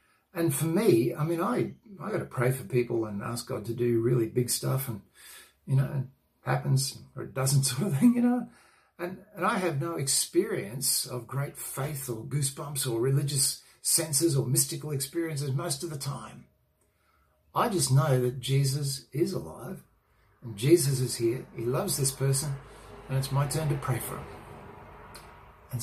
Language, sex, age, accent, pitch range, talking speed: English, male, 60-79, Australian, 125-160 Hz, 180 wpm